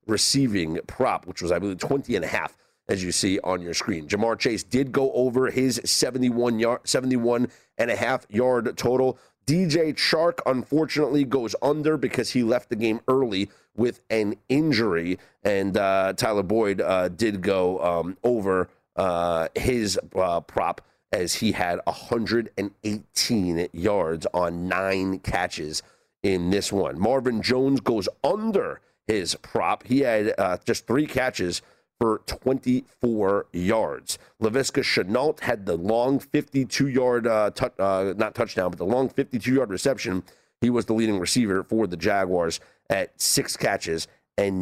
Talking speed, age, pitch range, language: 150 wpm, 40-59, 95-135 Hz, English